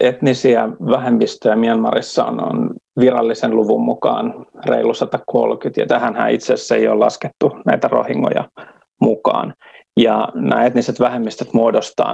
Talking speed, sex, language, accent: 120 wpm, male, Finnish, native